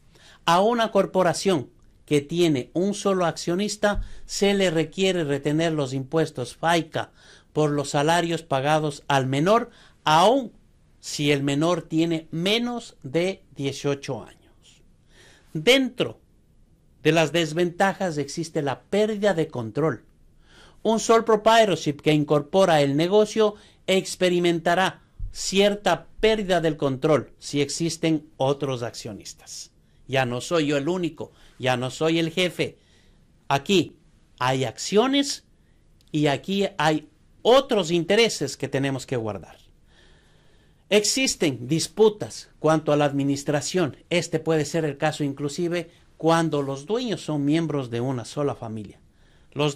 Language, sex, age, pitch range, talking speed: Spanish, male, 50-69, 140-180 Hz, 120 wpm